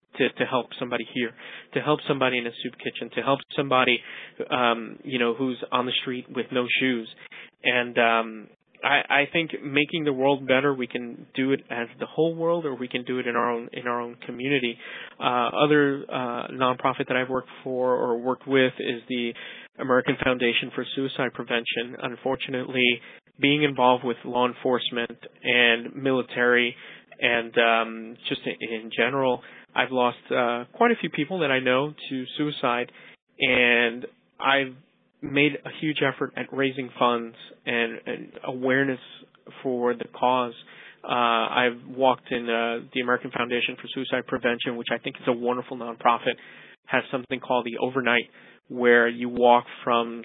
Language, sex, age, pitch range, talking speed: English, male, 20-39, 120-135 Hz, 165 wpm